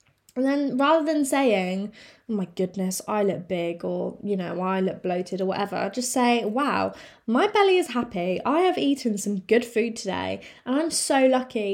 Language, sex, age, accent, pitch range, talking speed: English, female, 20-39, British, 200-255 Hz, 190 wpm